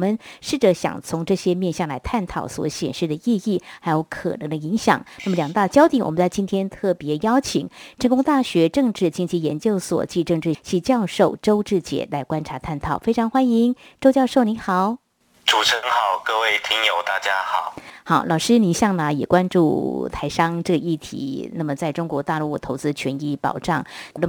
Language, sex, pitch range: Chinese, female, 150-195 Hz